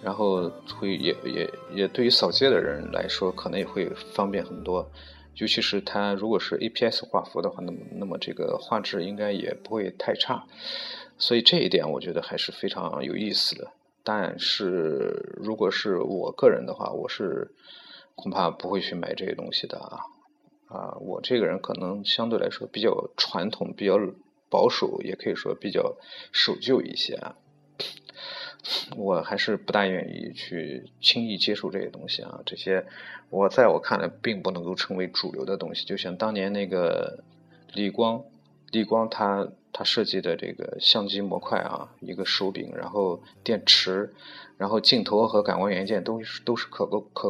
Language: Chinese